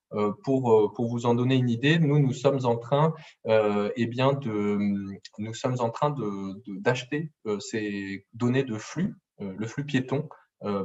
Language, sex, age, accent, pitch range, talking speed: French, male, 20-39, French, 110-145 Hz, 125 wpm